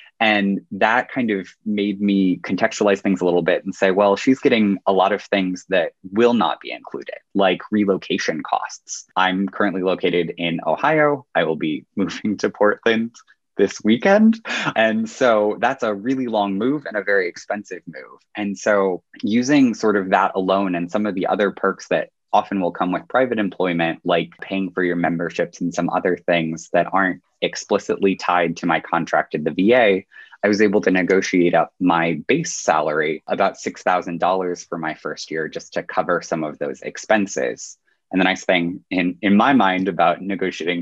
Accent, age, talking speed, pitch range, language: American, 20-39, 180 wpm, 90-105 Hz, English